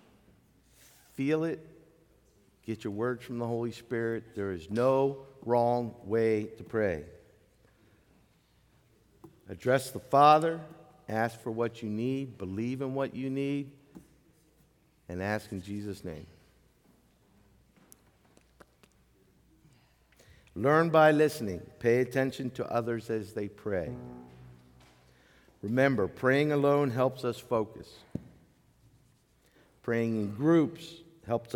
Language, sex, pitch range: English, male, 95-135 Hz